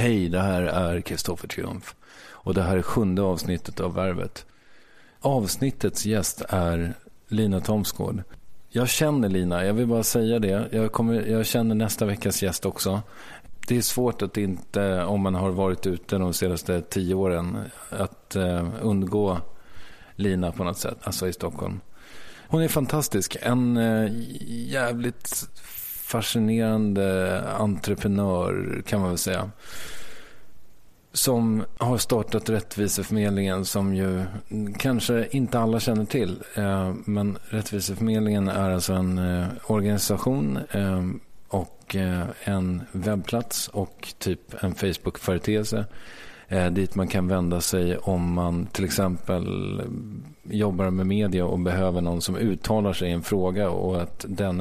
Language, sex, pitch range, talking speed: English, male, 90-110 Hz, 125 wpm